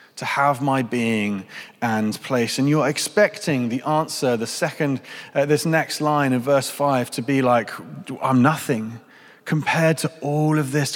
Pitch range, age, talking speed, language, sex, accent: 120-145 Hz, 30-49, 165 wpm, English, male, British